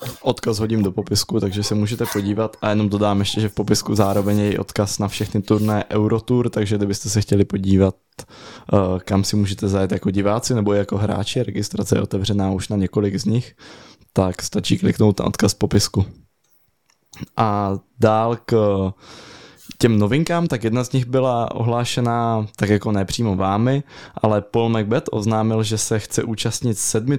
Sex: male